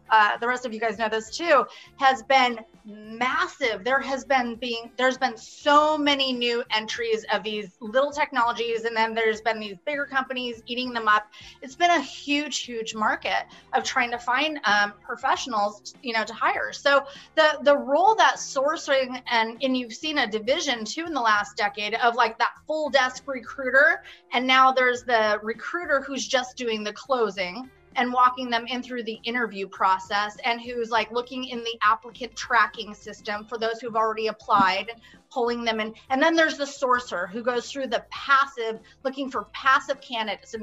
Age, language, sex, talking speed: 30-49, English, female, 185 wpm